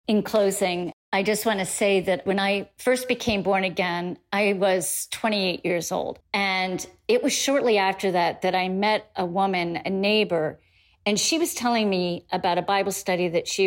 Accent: American